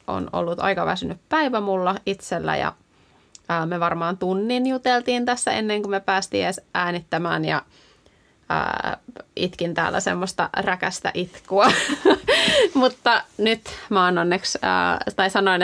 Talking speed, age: 130 wpm, 20-39